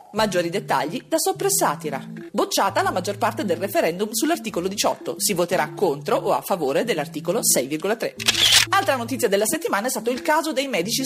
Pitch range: 175-295 Hz